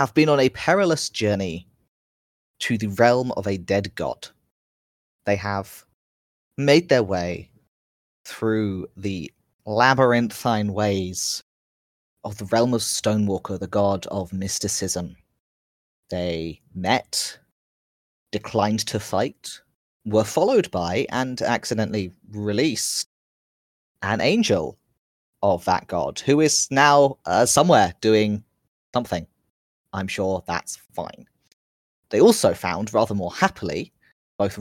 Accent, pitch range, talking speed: British, 90-115 Hz, 115 wpm